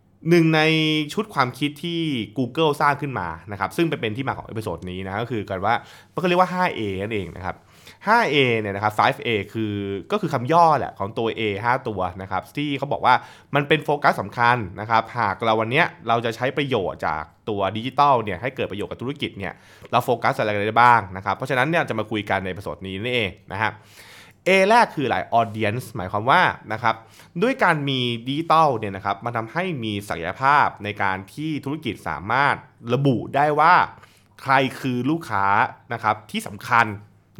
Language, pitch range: Thai, 105-145 Hz